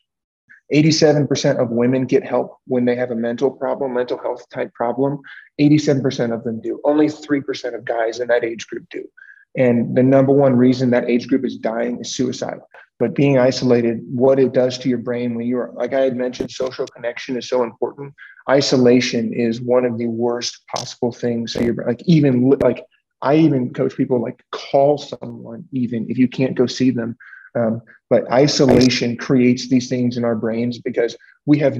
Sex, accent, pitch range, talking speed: male, American, 120-140 Hz, 185 wpm